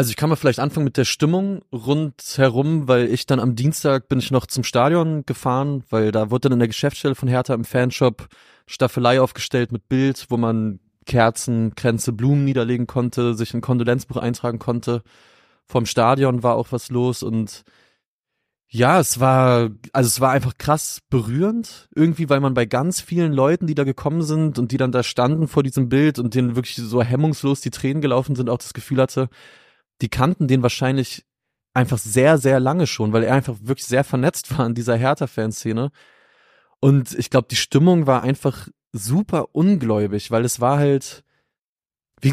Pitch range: 120-140 Hz